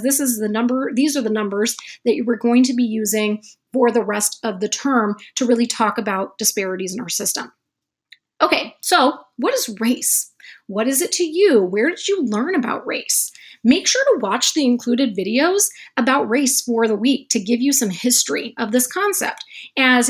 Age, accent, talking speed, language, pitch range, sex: 30-49, American, 195 wpm, English, 215-280 Hz, female